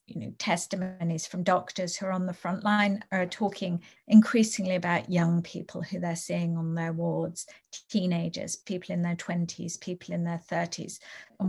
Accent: British